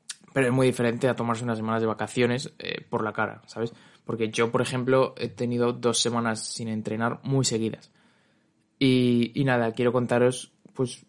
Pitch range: 115-140 Hz